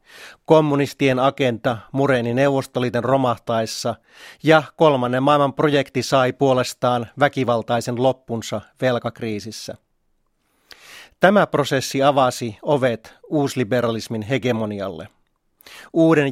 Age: 40-59